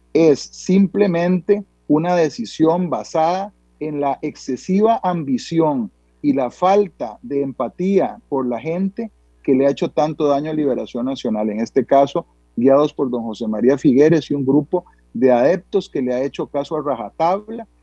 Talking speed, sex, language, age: 160 wpm, male, Spanish, 40-59